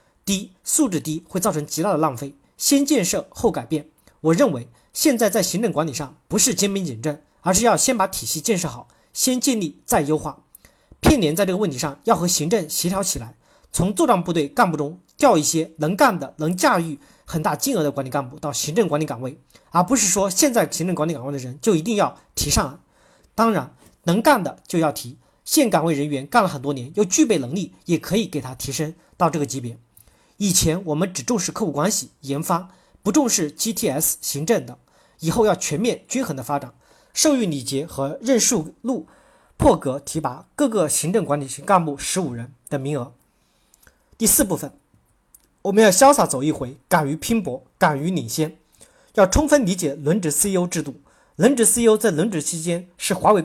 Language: Chinese